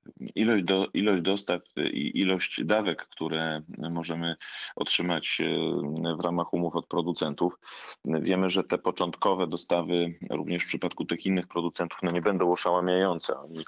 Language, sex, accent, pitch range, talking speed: Polish, male, native, 80-95 Hz, 125 wpm